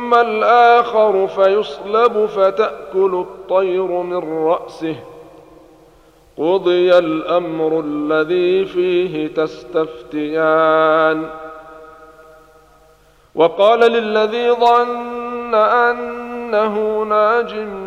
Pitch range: 155-180 Hz